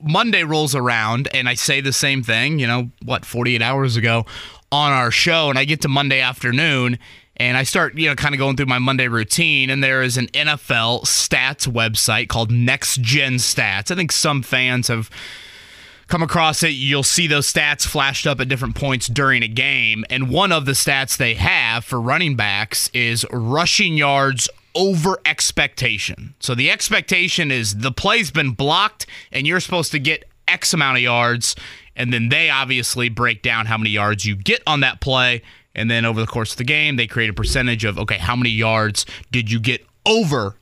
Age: 30-49